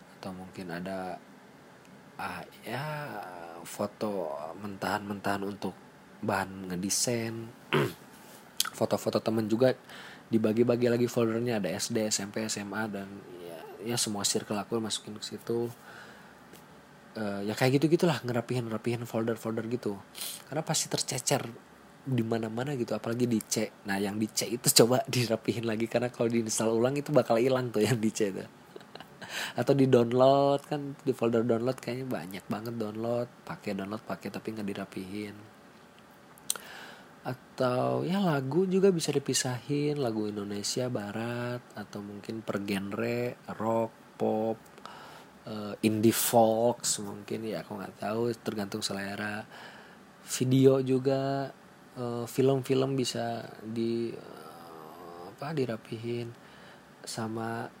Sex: male